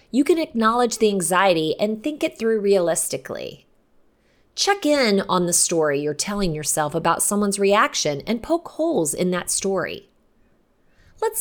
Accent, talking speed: American, 145 wpm